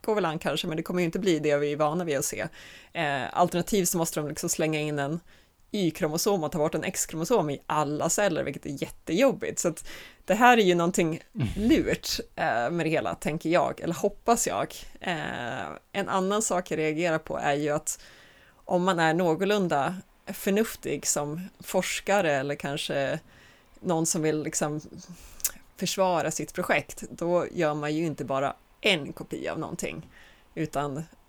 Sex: female